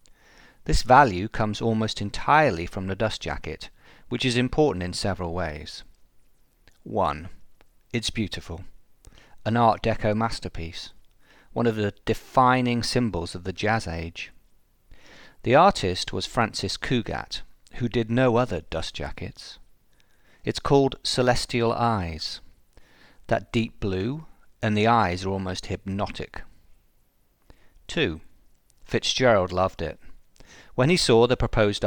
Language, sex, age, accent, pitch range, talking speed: English, male, 40-59, British, 90-120 Hz, 120 wpm